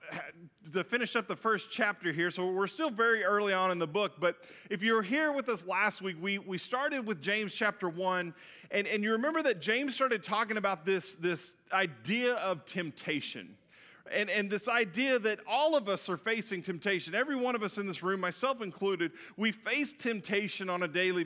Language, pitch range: English, 180-225 Hz